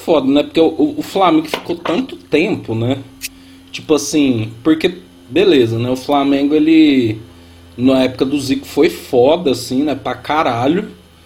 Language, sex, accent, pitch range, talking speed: Portuguese, male, Brazilian, 120-160 Hz, 155 wpm